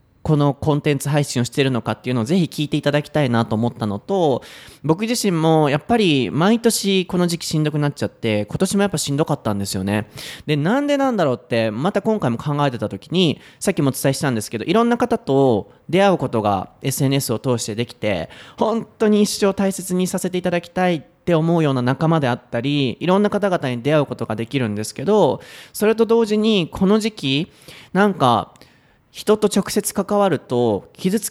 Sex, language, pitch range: male, Japanese, 125-190 Hz